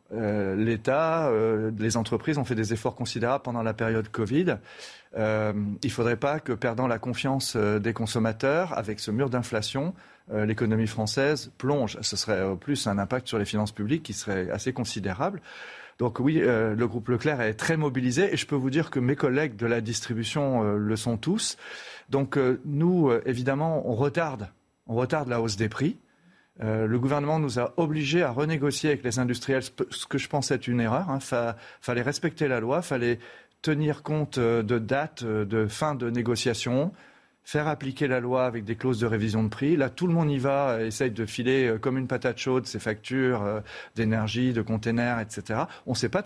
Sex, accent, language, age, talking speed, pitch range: male, French, French, 40-59, 200 wpm, 115-145 Hz